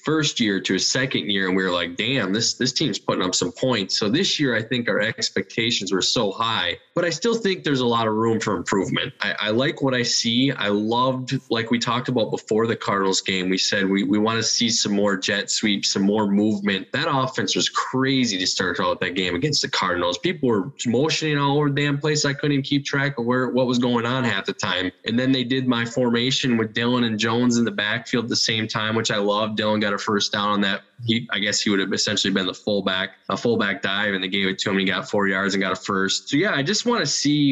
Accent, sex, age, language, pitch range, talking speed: American, male, 10-29, English, 100-125 Hz, 260 wpm